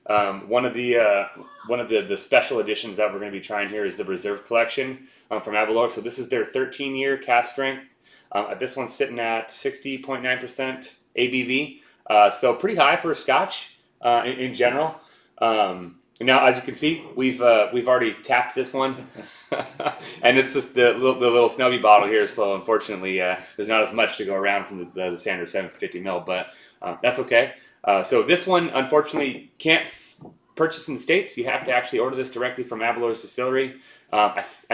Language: English